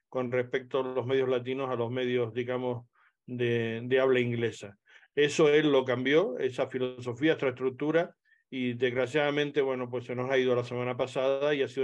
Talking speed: 180 wpm